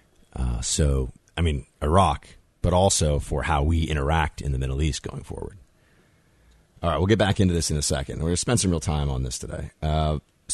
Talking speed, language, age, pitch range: 215 wpm, English, 30-49, 75-90 Hz